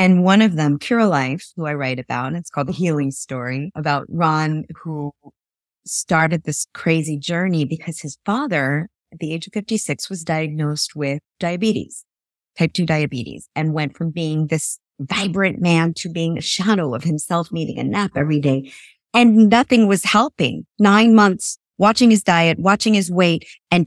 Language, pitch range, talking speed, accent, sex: English, 150-205 Hz, 170 wpm, American, female